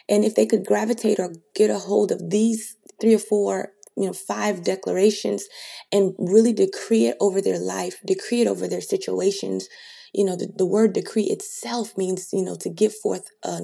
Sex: female